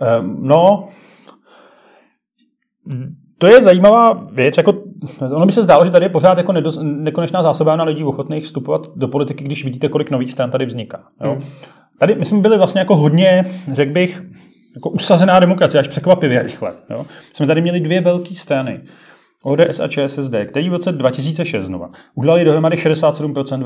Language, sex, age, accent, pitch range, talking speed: Czech, male, 30-49, native, 135-165 Hz, 165 wpm